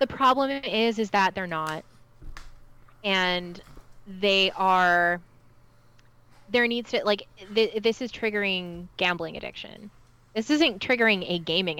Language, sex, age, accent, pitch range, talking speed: English, female, 20-39, American, 170-230 Hz, 120 wpm